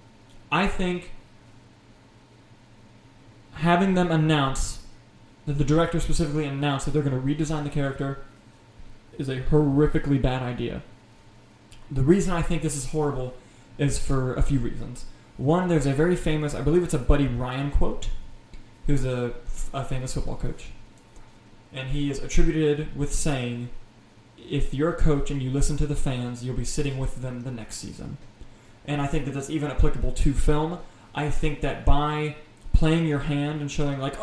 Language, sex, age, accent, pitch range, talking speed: English, male, 20-39, American, 125-160 Hz, 165 wpm